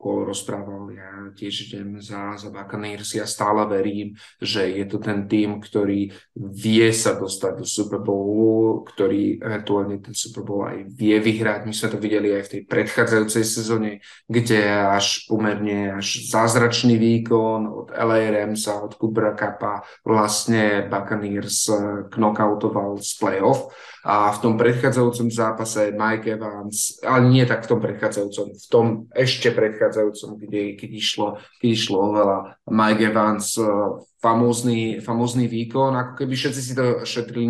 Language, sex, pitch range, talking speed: Slovak, male, 105-115 Hz, 140 wpm